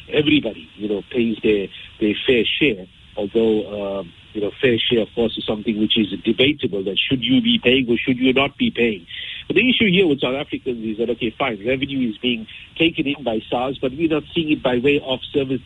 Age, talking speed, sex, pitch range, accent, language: 50-69, 225 wpm, male, 110-140 Hz, Indian, English